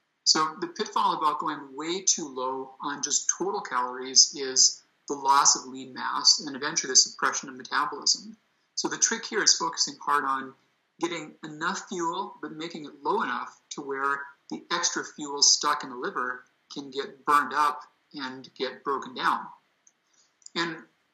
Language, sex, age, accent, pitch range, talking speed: English, male, 50-69, American, 145-195 Hz, 165 wpm